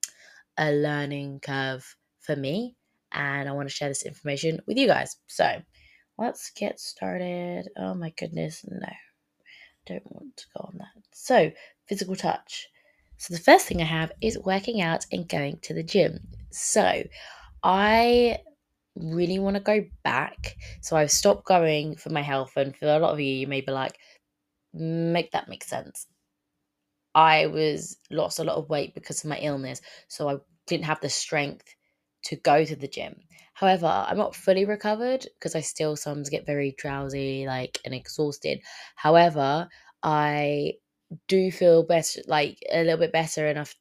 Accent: British